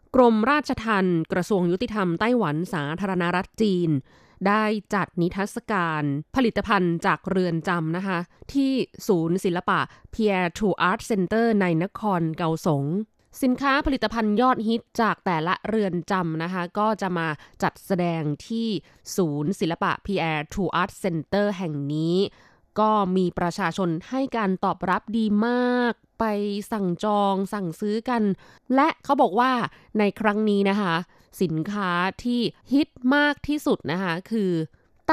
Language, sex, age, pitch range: Thai, female, 20-39, 175-220 Hz